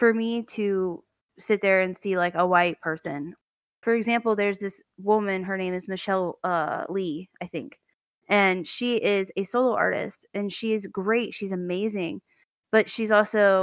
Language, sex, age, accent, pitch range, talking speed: English, female, 20-39, American, 175-205 Hz, 170 wpm